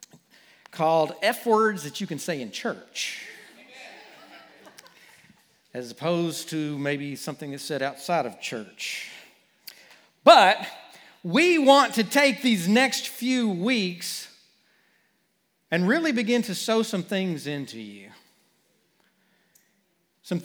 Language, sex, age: English, male, 40-59